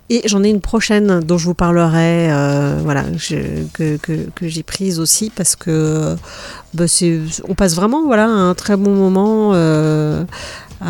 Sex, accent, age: female, French, 40-59